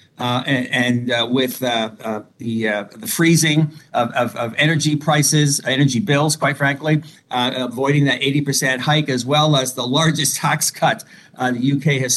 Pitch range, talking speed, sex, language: 130-155 Hz, 180 wpm, male, English